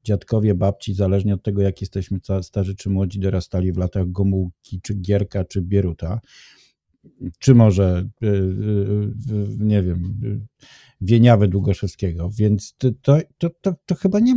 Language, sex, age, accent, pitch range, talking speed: Polish, male, 50-69, native, 100-130 Hz, 115 wpm